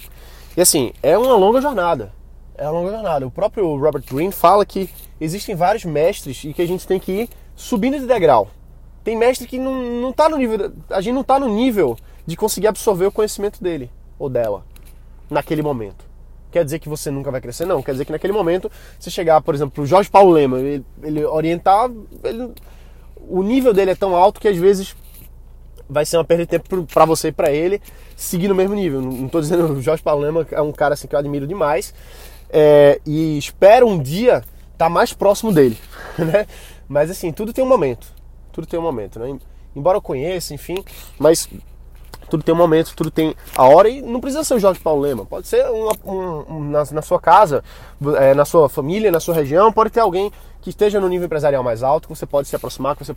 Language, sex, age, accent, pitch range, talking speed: Portuguese, male, 20-39, Brazilian, 145-200 Hz, 220 wpm